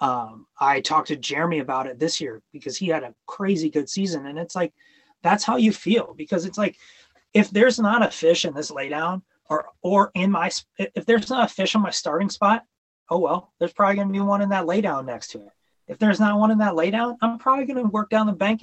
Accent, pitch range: American, 155-210 Hz